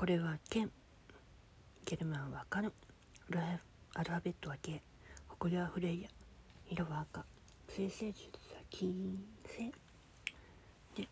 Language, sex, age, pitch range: Japanese, female, 40-59, 165-200 Hz